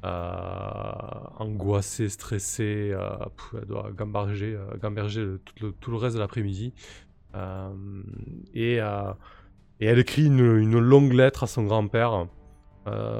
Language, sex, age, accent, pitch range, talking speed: French, male, 20-39, French, 100-115 Hz, 140 wpm